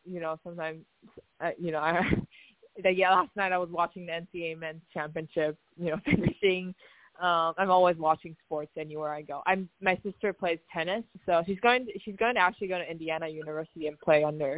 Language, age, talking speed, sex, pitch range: English, 20-39, 200 wpm, female, 160-190 Hz